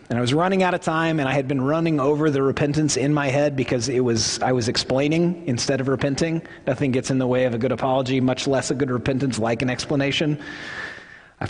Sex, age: male, 30-49